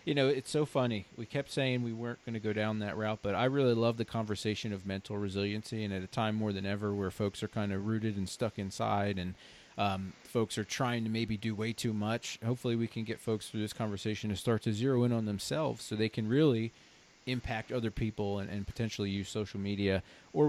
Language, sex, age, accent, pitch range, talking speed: English, male, 30-49, American, 100-120 Hz, 235 wpm